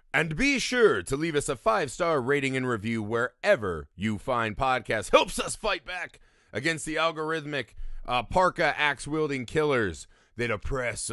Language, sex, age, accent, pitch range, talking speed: English, male, 30-49, American, 110-170 Hz, 160 wpm